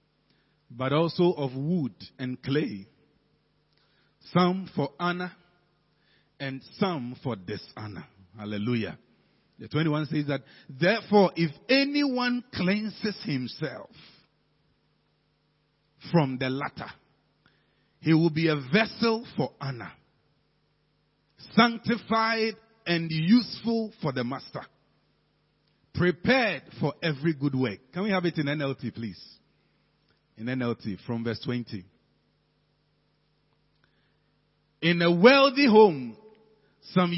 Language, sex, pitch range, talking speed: English, male, 140-215 Hz, 100 wpm